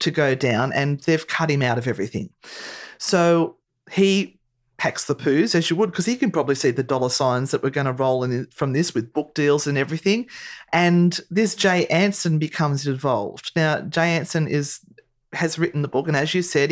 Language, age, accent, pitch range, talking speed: English, 40-59, Australian, 145-180 Hz, 205 wpm